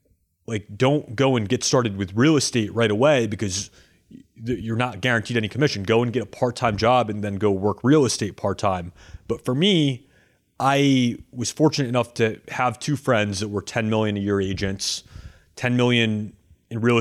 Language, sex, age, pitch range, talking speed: English, male, 30-49, 105-130 Hz, 185 wpm